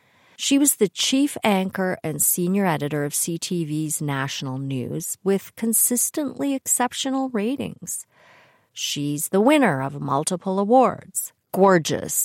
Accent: American